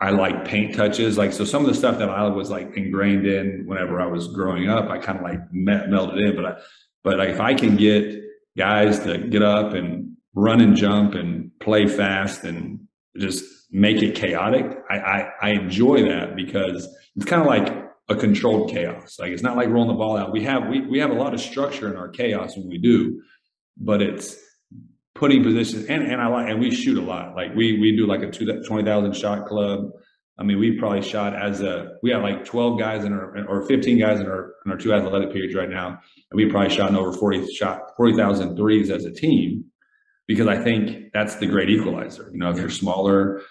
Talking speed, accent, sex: 220 wpm, American, male